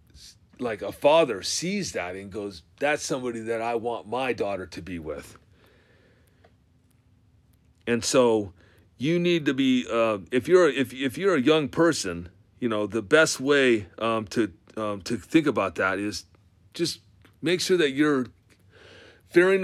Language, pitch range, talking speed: English, 105-140 Hz, 155 wpm